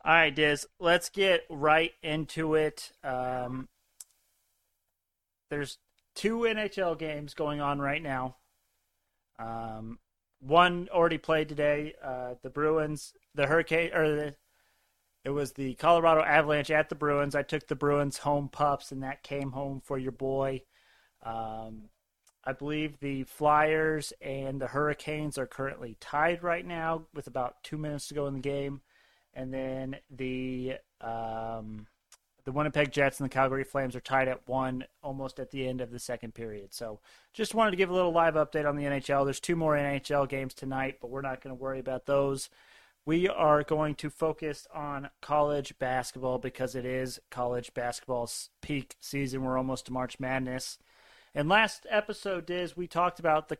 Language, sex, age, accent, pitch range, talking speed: English, male, 30-49, American, 130-155 Hz, 165 wpm